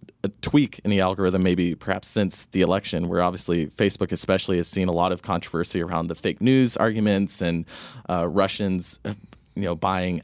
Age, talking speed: 20-39, 180 wpm